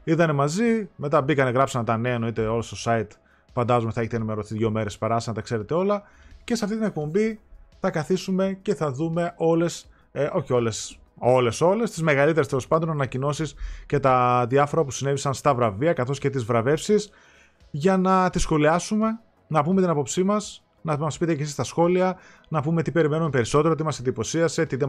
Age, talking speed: 30-49, 195 wpm